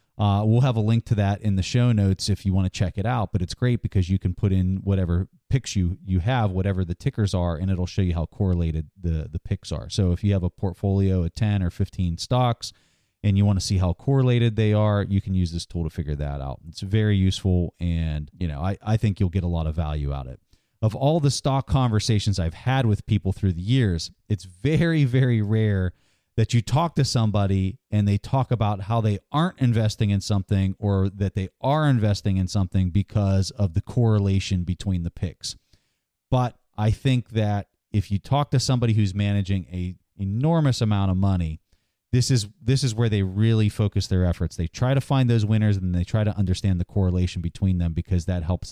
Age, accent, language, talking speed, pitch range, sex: 30-49, American, English, 220 wpm, 90-110 Hz, male